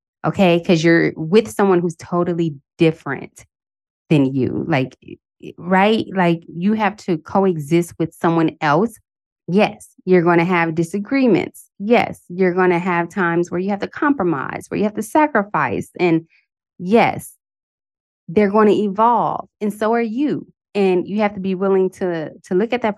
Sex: female